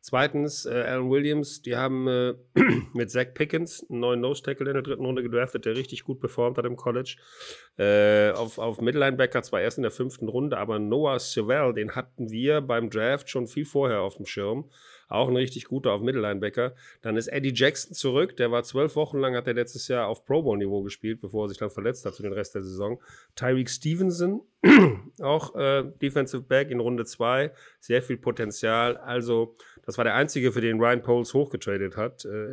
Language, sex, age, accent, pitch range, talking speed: German, male, 40-59, German, 115-135 Hz, 195 wpm